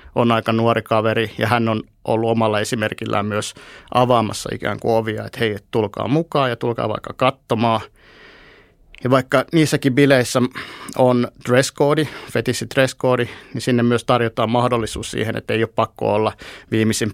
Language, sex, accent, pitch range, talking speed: Finnish, male, native, 110-125 Hz, 160 wpm